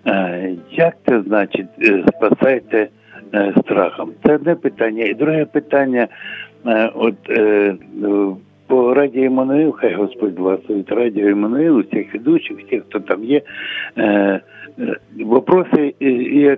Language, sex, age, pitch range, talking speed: Ukrainian, male, 60-79, 105-125 Hz, 100 wpm